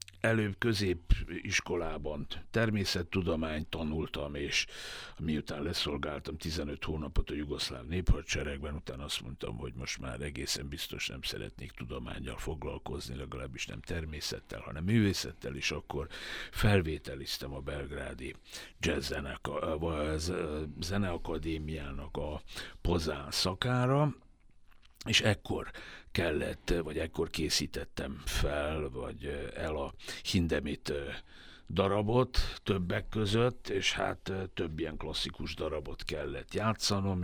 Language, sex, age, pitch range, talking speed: English, male, 60-79, 75-95 Hz, 100 wpm